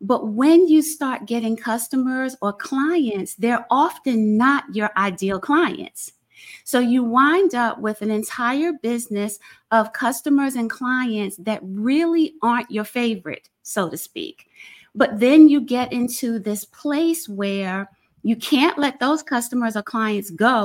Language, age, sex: English, 30-49, female